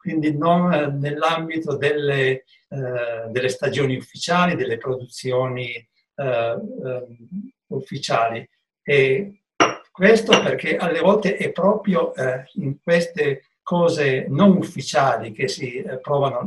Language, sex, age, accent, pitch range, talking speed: Italian, male, 60-79, native, 130-190 Hz, 90 wpm